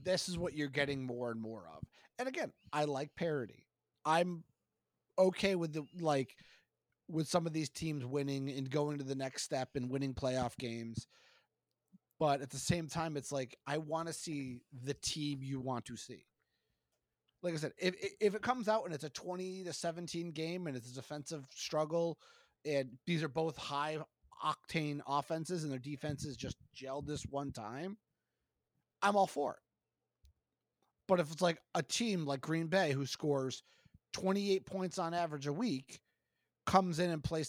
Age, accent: 30-49, American